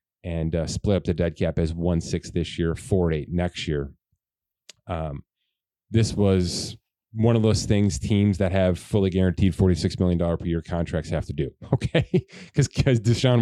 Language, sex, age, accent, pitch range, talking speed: English, male, 30-49, American, 85-105 Hz, 175 wpm